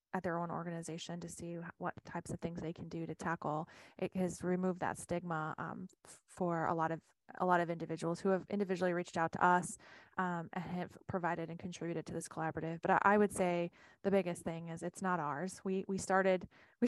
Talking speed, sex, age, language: 215 wpm, female, 20-39, English